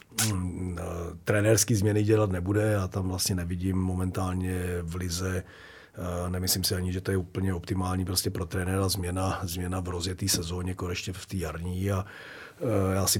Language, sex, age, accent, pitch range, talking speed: Czech, male, 40-59, native, 90-100 Hz, 160 wpm